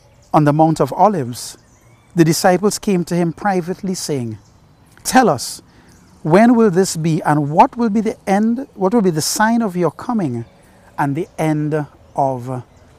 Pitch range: 145-190 Hz